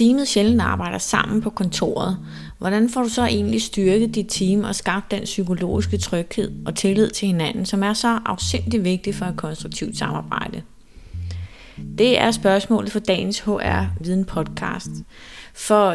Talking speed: 155 wpm